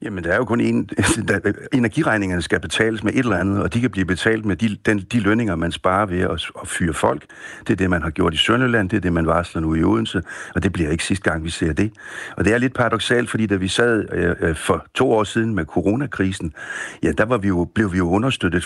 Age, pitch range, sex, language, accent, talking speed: 60-79, 90-110 Hz, male, Danish, native, 250 wpm